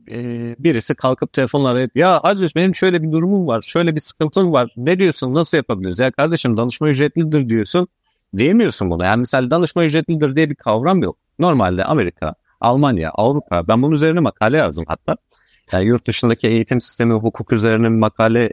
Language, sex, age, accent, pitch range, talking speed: Turkish, male, 50-69, native, 110-160 Hz, 170 wpm